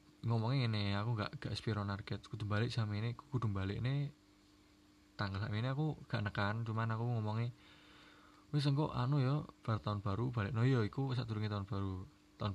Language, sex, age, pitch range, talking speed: Indonesian, male, 20-39, 100-125 Hz, 195 wpm